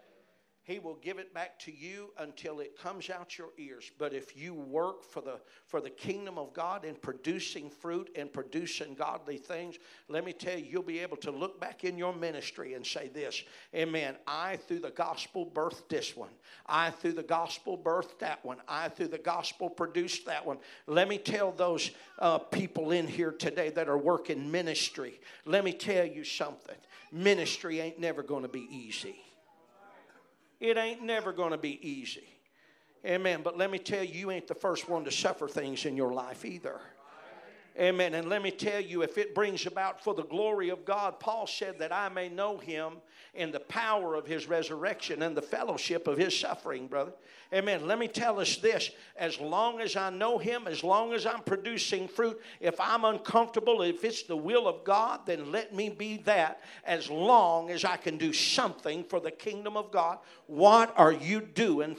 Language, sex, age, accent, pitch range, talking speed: English, male, 50-69, American, 165-220 Hz, 195 wpm